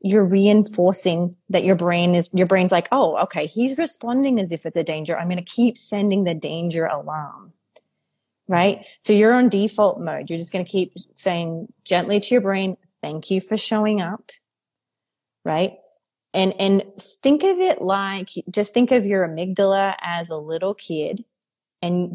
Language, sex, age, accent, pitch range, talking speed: English, female, 30-49, American, 175-225 Hz, 175 wpm